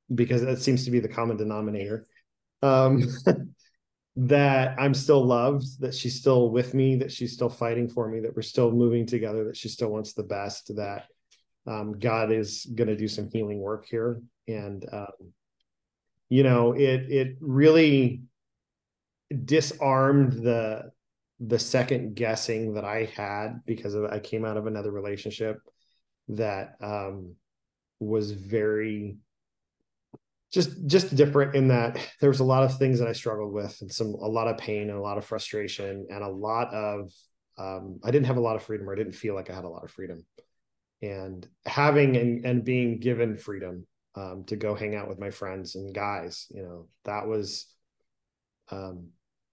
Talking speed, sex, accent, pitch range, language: 175 wpm, male, American, 105-125 Hz, English